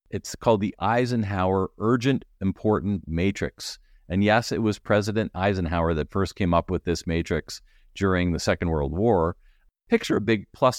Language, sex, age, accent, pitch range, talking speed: English, male, 40-59, American, 85-110 Hz, 160 wpm